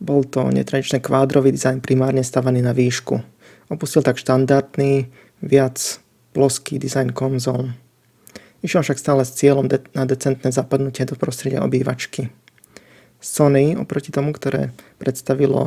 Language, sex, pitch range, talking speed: Slovak, male, 125-140 Hz, 125 wpm